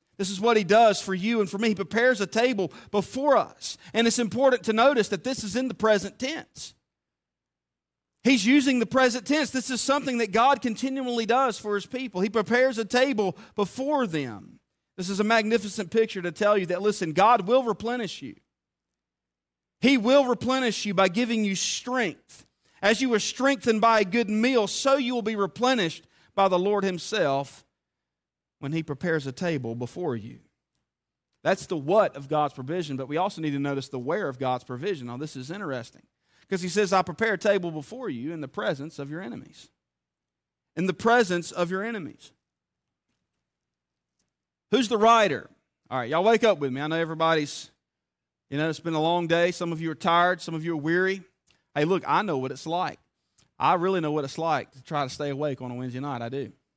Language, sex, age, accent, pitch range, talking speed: English, male, 40-59, American, 140-230 Hz, 200 wpm